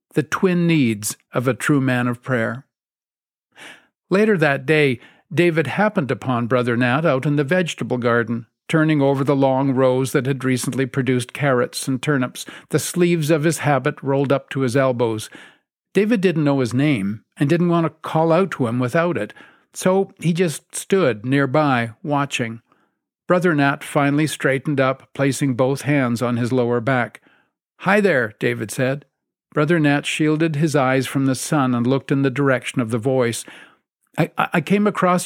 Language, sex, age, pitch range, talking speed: English, male, 50-69, 125-155 Hz, 175 wpm